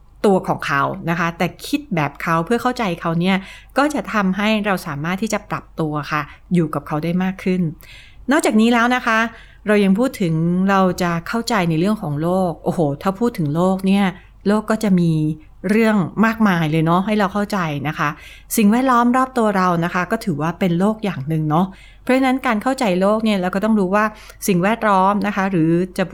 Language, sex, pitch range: Thai, female, 165-215 Hz